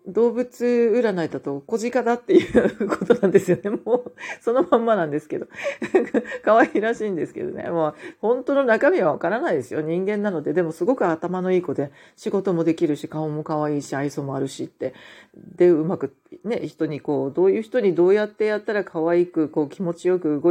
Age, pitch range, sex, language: 40-59, 155-235 Hz, female, Japanese